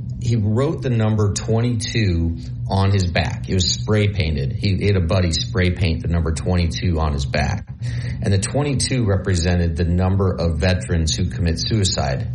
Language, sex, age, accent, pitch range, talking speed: English, male, 40-59, American, 95-120 Hz, 170 wpm